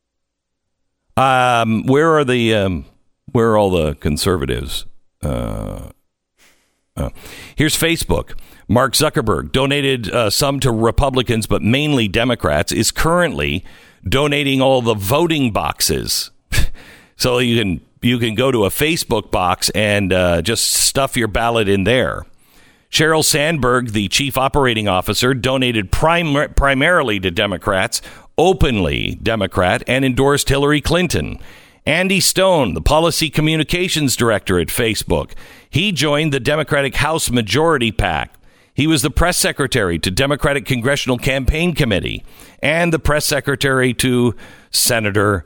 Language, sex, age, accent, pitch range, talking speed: English, male, 50-69, American, 105-150 Hz, 130 wpm